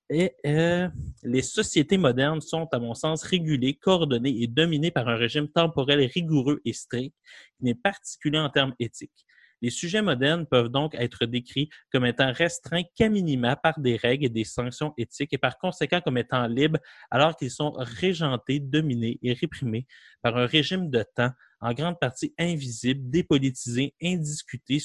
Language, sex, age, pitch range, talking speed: French, male, 30-49, 120-165 Hz, 165 wpm